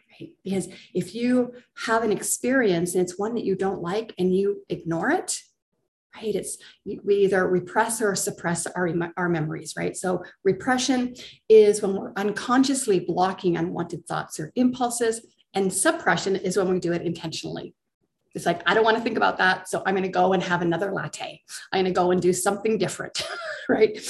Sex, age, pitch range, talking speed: female, 40-59, 175-215 Hz, 185 wpm